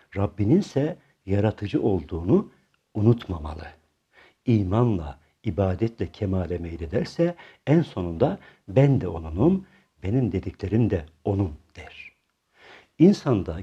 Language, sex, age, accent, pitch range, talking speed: Turkish, male, 60-79, native, 90-130 Hz, 90 wpm